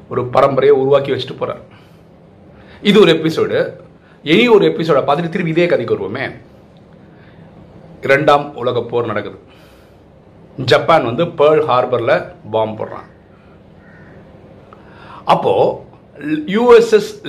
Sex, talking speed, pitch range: male, 50 wpm, 135-195 Hz